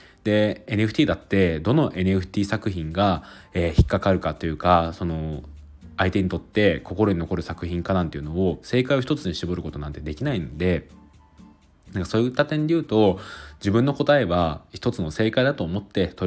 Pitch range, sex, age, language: 85-105 Hz, male, 20-39, Japanese